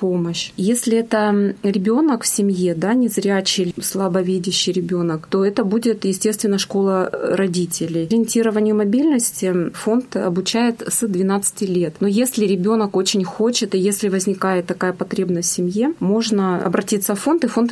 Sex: female